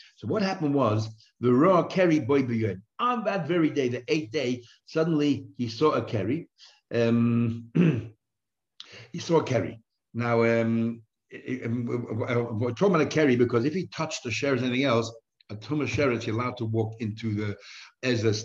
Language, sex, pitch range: English, male, 110-140 Hz